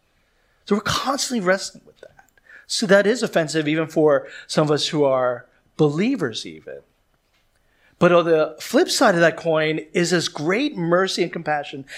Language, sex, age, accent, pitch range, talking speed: English, male, 40-59, American, 145-195 Hz, 165 wpm